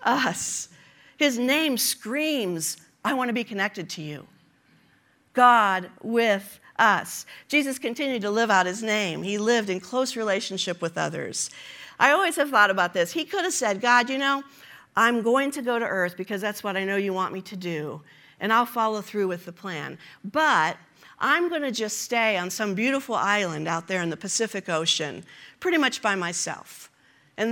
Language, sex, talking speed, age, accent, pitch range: English, female, 185 wpm, 50-69, American, 190-255 Hz